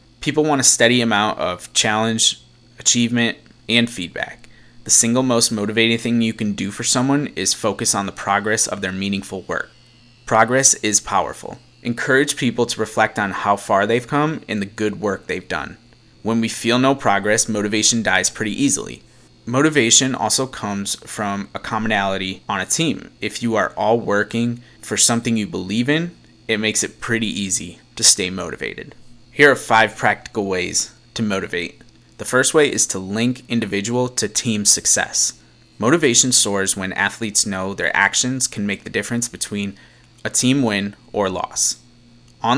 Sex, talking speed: male, 165 wpm